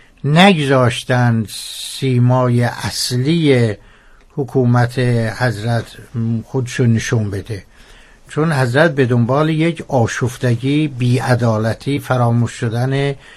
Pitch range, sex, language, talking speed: 120-140 Hz, male, Persian, 75 wpm